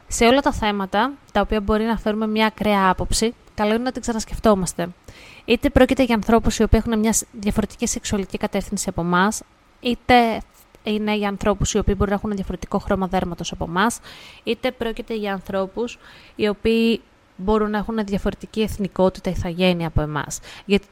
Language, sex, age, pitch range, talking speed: Greek, female, 20-39, 185-230 Hz, 170 wpm